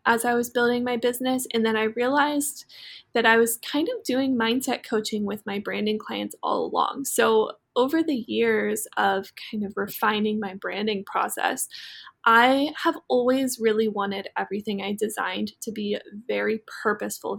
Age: 20-39